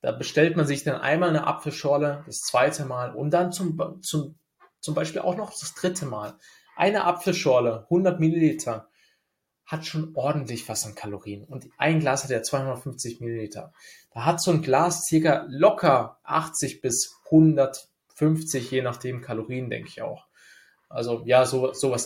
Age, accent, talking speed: 20-39, German, 160 wpm